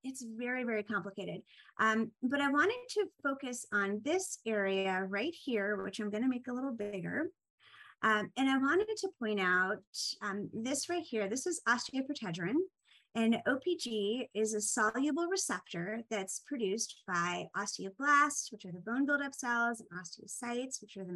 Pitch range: 200-270 Hz